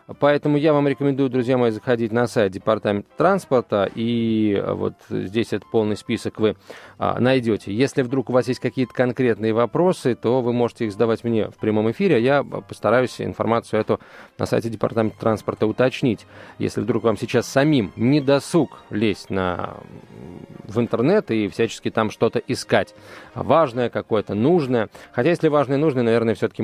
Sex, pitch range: male, 110-140 Hz